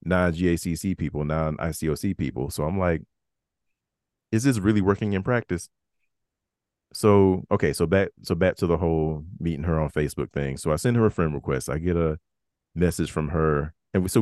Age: 30-49